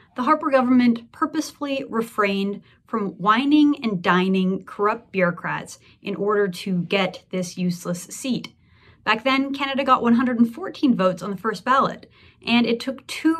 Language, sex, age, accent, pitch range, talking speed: English, female, 30-49, American, 190-260 Hz, 145 wpm